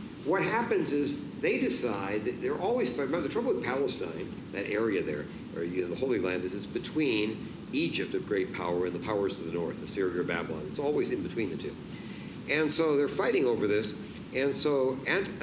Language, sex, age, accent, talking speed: English, male, 50-69, American, 205 wpm